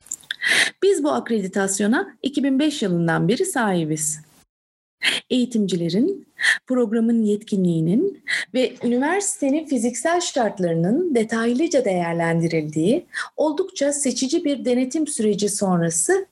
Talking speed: 80 wpm